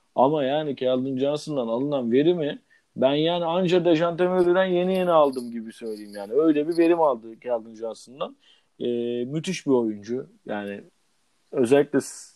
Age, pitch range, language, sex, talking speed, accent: 40-59, 125-160 Hz, Turkish, male, 125 wpm, native